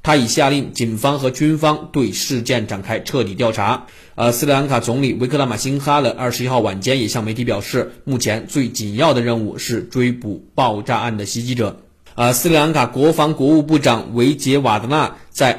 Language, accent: Chinese, native